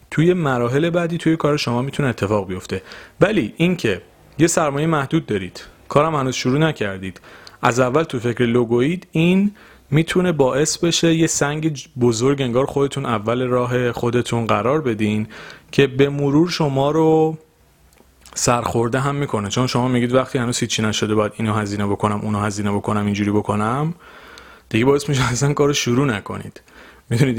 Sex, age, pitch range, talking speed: male, 30-49, 110-150 Hz, 155 wpm